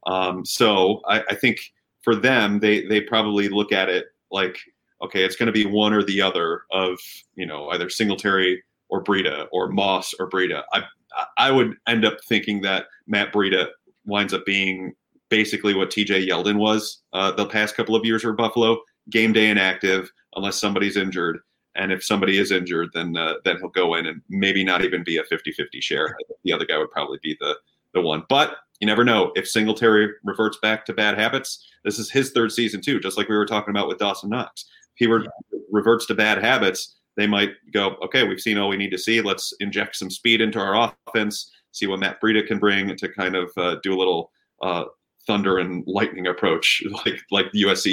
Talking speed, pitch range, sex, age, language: 210 wpm, 95-110 Hz, male, 30-49, English